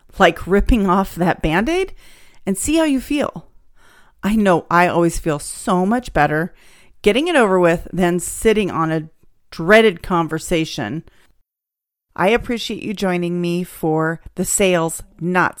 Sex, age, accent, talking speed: female, 40-59, American, 140 wpm